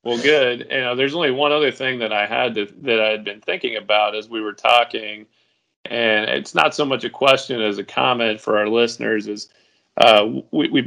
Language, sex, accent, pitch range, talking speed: English, male, American, 105-120 Hz, 225 wpm